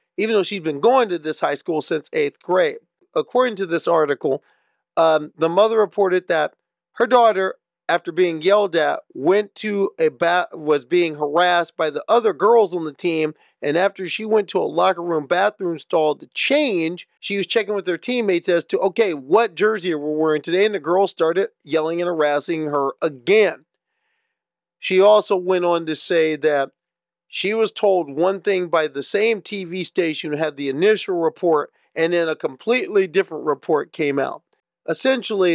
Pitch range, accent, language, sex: 160-205 Hz, American, English, male